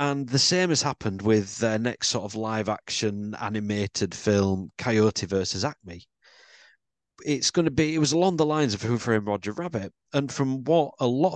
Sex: male